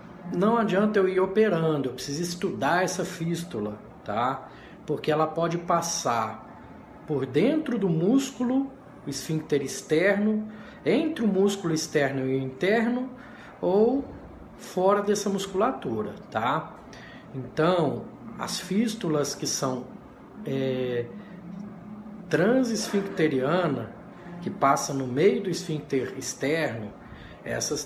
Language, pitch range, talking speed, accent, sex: Portuguese, 135-195 Hz, 105 wpm, Brazilian, male